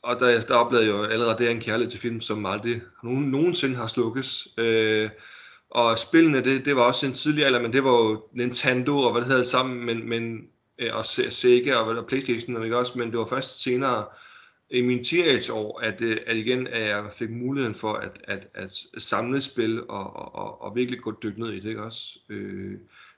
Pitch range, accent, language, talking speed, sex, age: 110-130 Hz, native, Danish, 210 wpm, male, 30-49